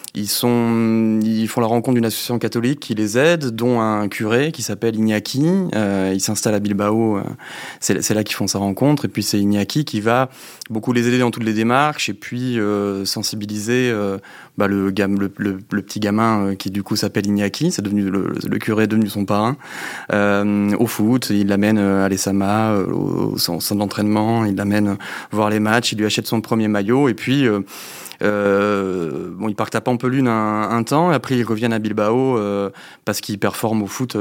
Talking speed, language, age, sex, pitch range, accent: 200 wpm, French, 30-49, male, 100-120 Hz, French